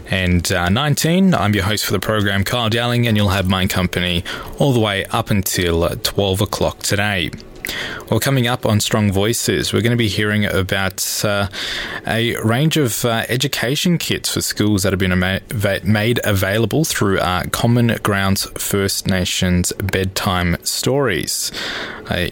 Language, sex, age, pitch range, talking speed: English, male, 20-39, 95-115 Hz, 160 wpm